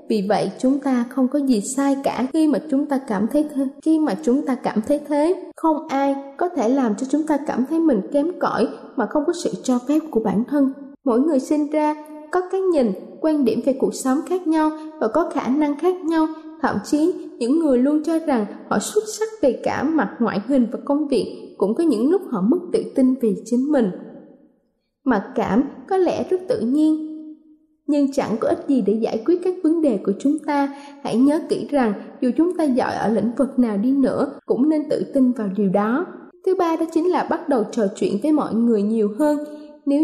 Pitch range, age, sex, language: 245-310 Hz, 20-39, female, Thai